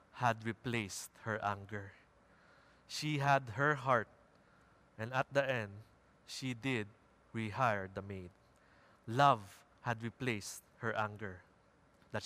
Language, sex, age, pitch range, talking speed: English, male, 20-39, 105-125 Hz, 115 wpm